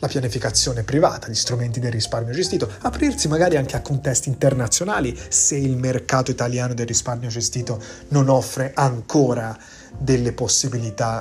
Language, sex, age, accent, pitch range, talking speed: Italian, male, 30-49, native, 120-140 Hz, 140 wpm